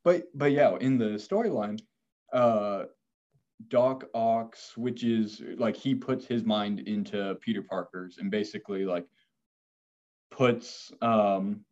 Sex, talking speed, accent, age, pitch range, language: male, 125 wpm, American, 20-39, 100-120 Hz, English